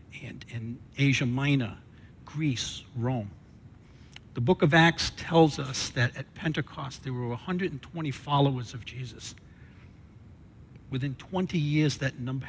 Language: English